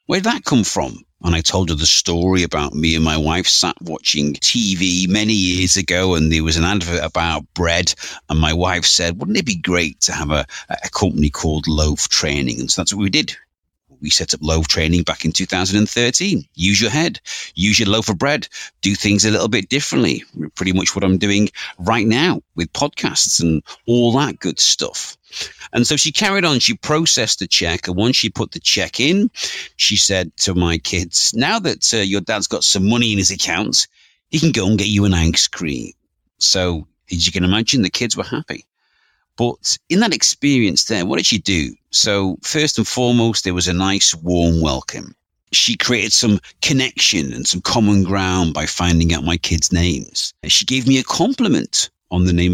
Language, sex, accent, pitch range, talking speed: English, male, British, 80-110 Hz, 200 wpm